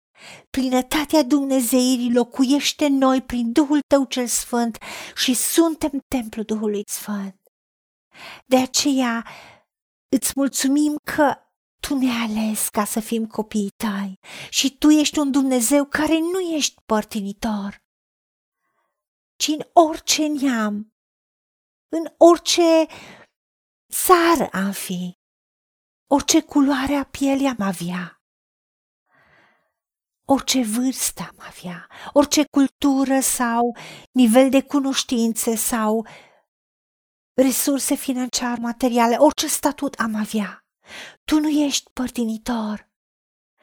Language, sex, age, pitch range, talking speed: Romanian, female, 40-59, 230-290 Hz, 100 wpm